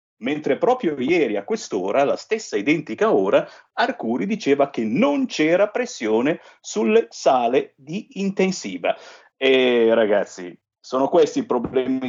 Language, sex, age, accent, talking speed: Italian, male, 50-69, native, 125 wpm